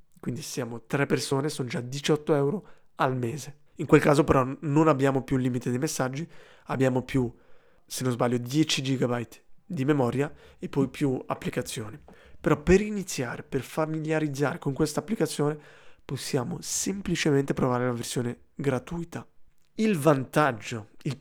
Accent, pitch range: native, 130-160 Hz